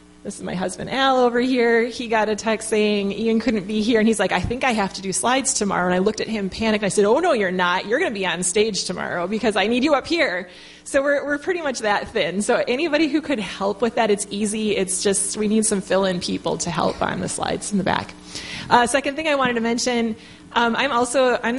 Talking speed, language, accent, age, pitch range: 265 wpm, English, American, 20-39, 195-235 Hz